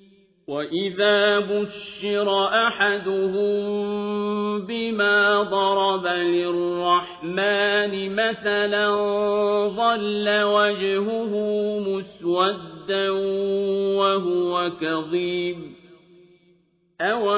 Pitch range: 180-205 Hz